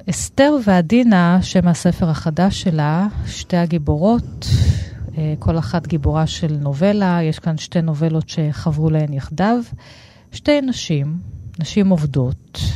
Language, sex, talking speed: Hebrew, female, 110 wpm